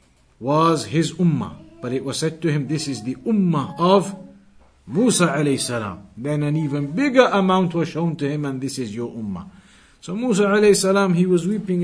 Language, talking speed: English, 195 wpm